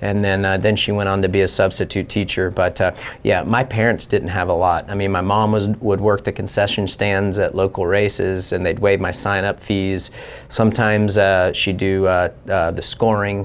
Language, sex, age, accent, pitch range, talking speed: English, male, 40-59, American, 95-110 Hz, 220 wpm